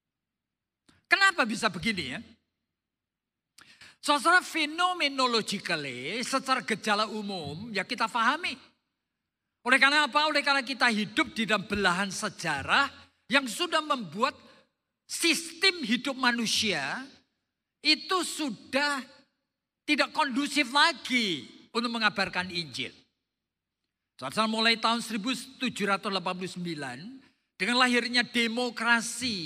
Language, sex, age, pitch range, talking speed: Indonesian, male, 50-69, 195-280 Hz, 90 wpm